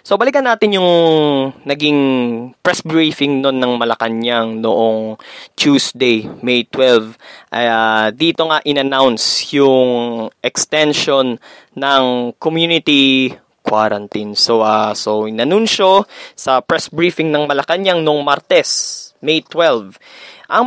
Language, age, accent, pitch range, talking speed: Filipino, 20-39, native, 120-160 Hz, 105 wpm